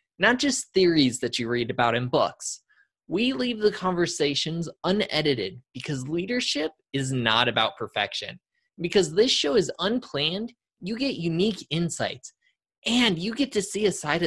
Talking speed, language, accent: 150 wpm, English, American